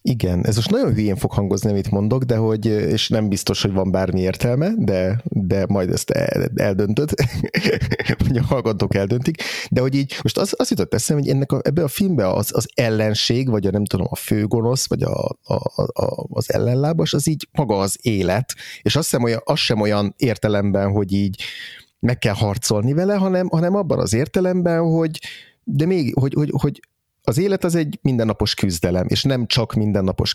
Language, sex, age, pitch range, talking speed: Hungarian, male, 30-49, 100-130 Hz, 190 wpm